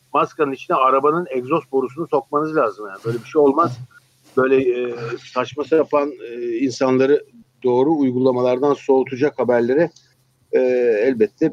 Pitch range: 120-150 Hz